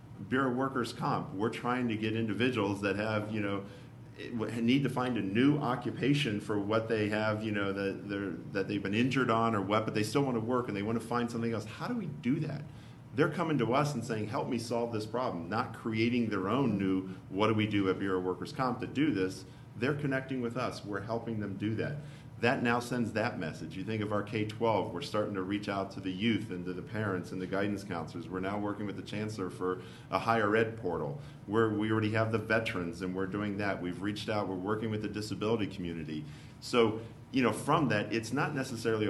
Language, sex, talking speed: English, male, 235 wpm